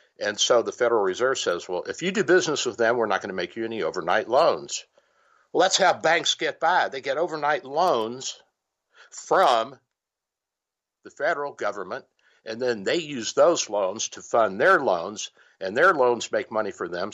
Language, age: English, 60-79